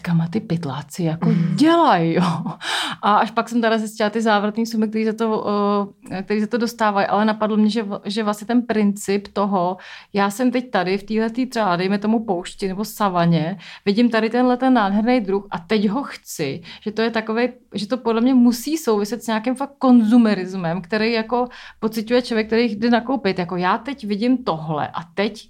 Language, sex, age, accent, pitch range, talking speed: Czech, female, 30-49, native, 195-230 Hz, 185 wpm